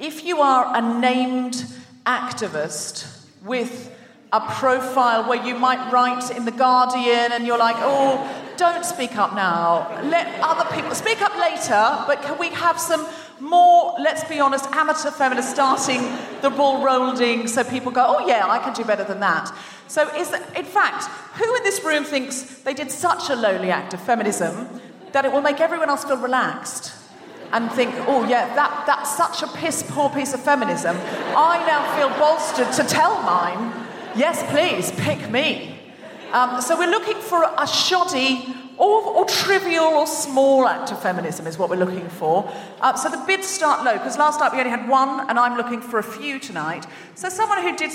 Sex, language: female, English